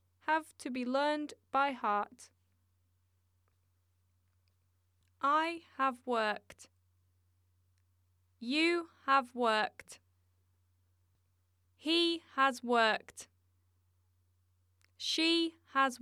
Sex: female